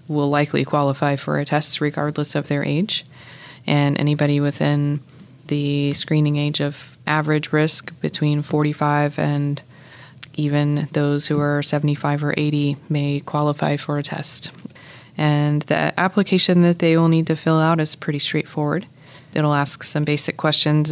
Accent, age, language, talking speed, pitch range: American, 20-39, English, 150 wpm, 145-155 Hz